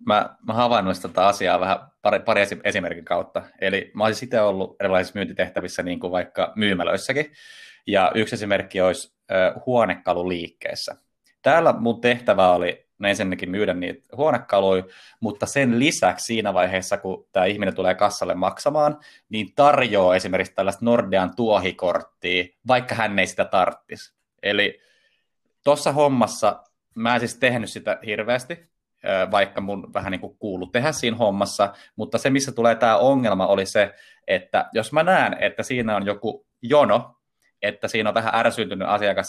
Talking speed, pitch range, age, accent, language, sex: 145 wpm, 95-125 Hz, 20-39, native, Finnish, male